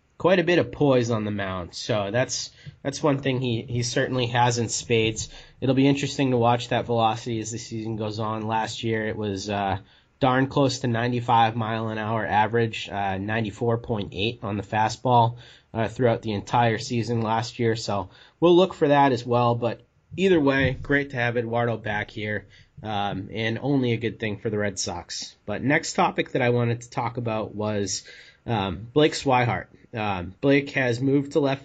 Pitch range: 110-130 Hz